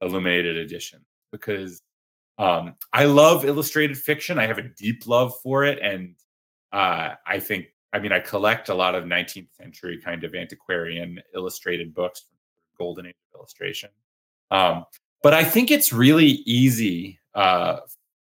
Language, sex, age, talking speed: English, male, 30-49, 145 wpm